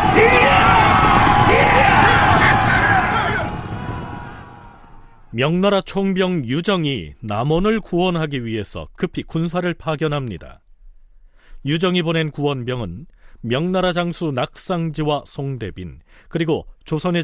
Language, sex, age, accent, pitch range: Korean, male, 40-59, native, 115-165 Hz